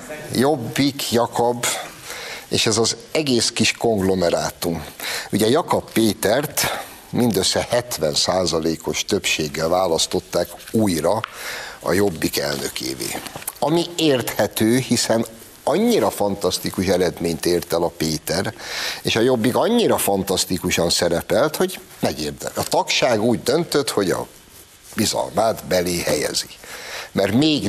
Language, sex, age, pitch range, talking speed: Hungarian, male, 60-79, 95-140 Hz, 105 wpm